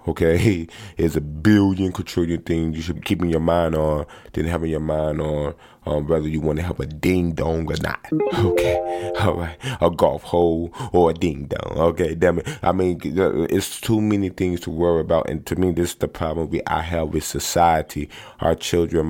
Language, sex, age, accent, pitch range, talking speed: English, male, 20-39, American, 80-90 Hz, 205 wpm